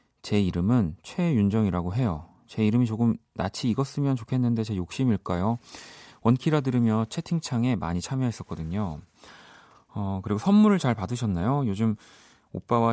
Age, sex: 30-49, male